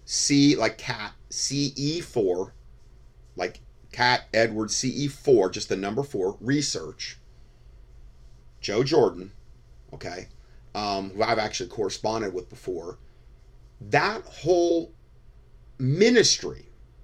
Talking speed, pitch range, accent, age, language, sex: 90 wpm, 100-155 Hz, American, 30-49, English, male